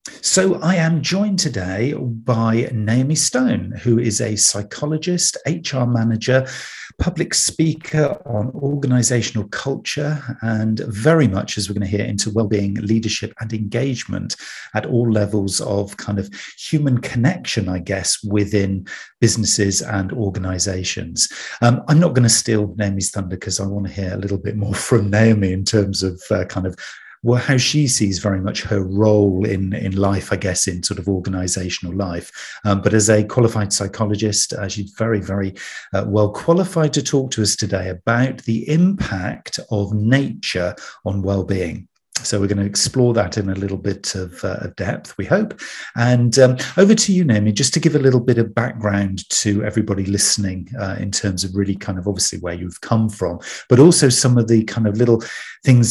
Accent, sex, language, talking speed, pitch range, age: British, male, English, 180 wpm, 100-120 Hz, 50-69